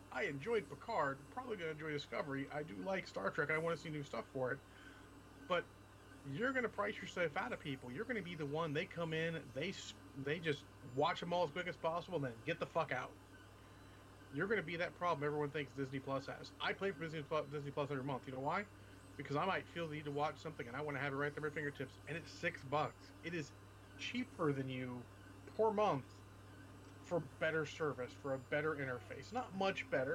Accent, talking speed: American, 235 wpm